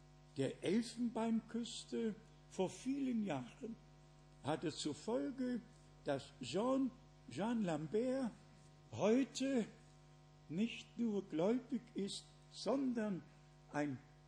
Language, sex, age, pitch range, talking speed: Croatian, male, 60-79, 150-225 Hz, 75 wpm